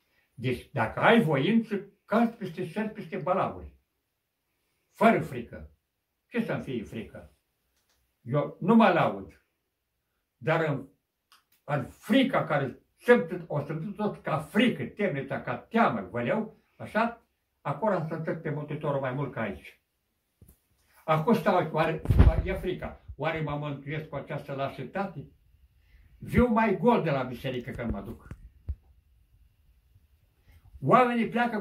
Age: 60-79